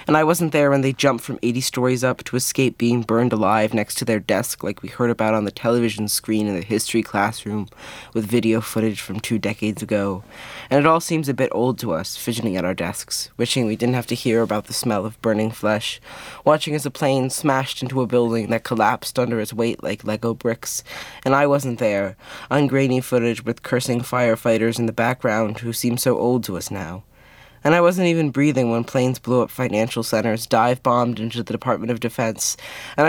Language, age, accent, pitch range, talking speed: English, 20-39, American, 110-130 Hz, 215 wpm